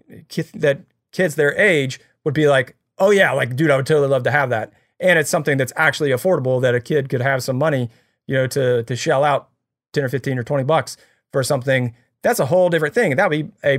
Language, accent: English, American